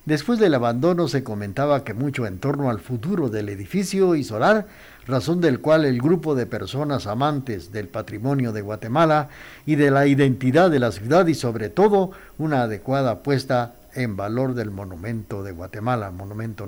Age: 60-79